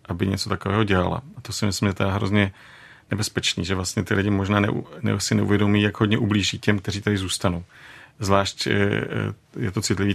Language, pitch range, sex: Czech, 100-110 Hz, male